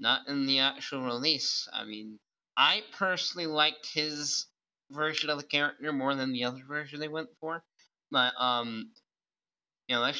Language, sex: English, male